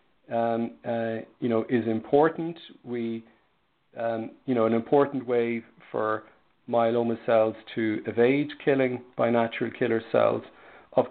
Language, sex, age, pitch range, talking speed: English, male, 50-69, 115-125 Hz, 130 wpm